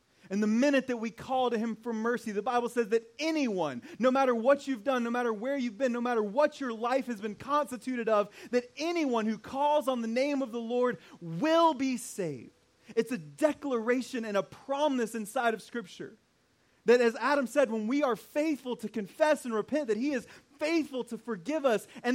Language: English